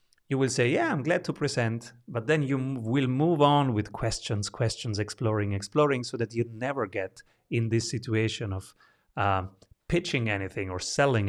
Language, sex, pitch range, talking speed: English, male, 105-145 Hz, 175 wpm